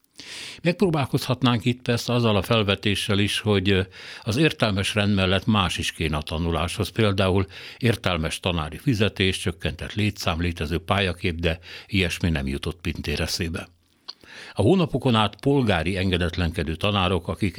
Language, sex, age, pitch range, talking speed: Hungarian, male, 60-79, 85-110 Hz, 130 wpm